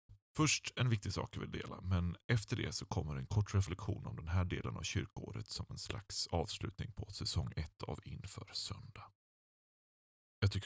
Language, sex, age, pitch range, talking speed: Swedish, male, 30-49, 90-110 Hz, 185 wpm